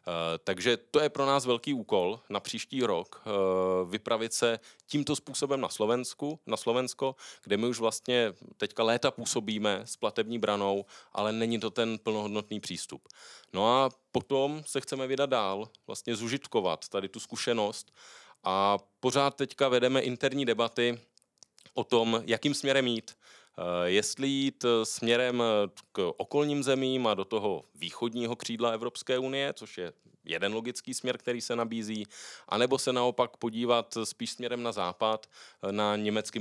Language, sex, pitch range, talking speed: Czech, male, 105-130 Hz, 145 wpm